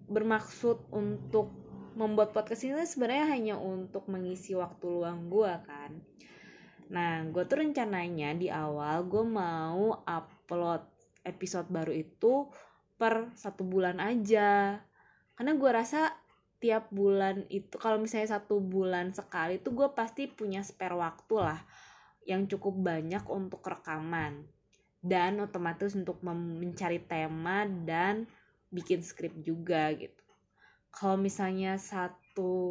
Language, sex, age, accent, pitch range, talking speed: Indonesian, female, 20-39, native, 165-210 Hz, 120 wpm